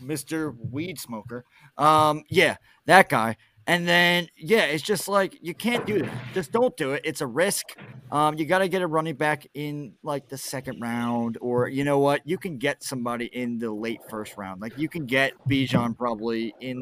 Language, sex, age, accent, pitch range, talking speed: English, male, 30-49, American, 120-150 Hz, 205 wpm